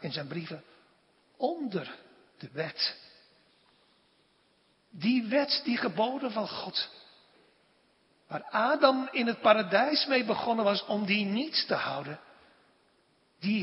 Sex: male